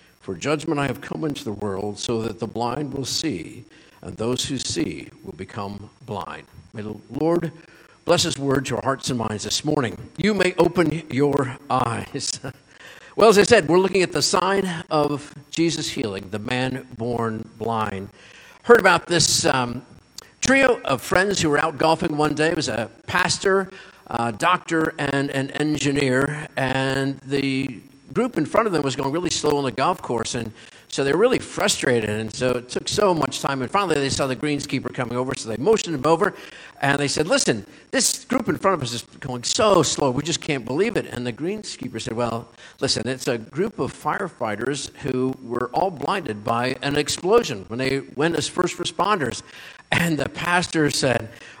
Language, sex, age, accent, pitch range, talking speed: English, male, 50-69, American, 120-165 Hz, 190 wpm